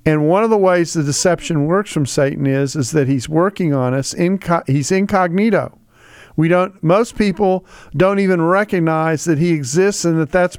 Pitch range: 145-185 Hz